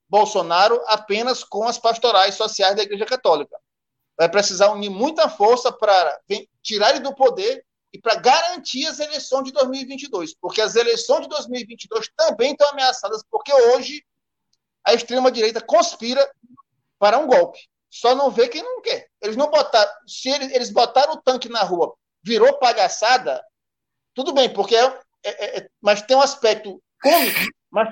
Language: Portuguese